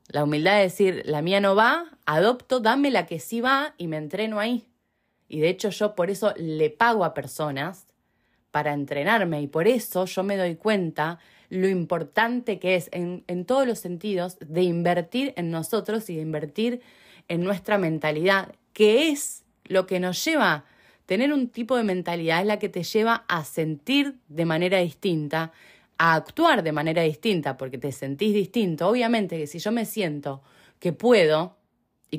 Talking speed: 180 wpm